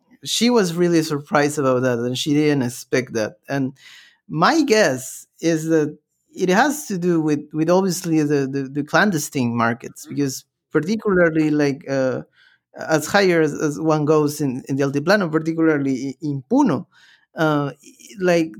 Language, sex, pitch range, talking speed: English, male, 130-170 Hz, 150 wpm